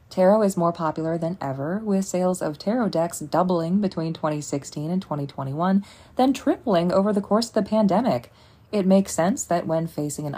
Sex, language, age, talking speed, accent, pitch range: female, English, 20-39, 180 wpm, American, 155-210 Hz